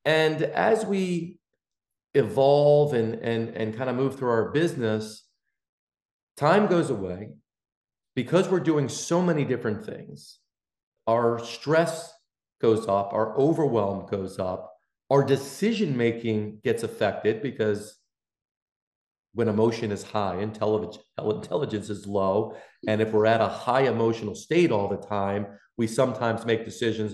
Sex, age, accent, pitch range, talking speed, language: male, 40-59, American, 110-140 Hz, 135 wpm, English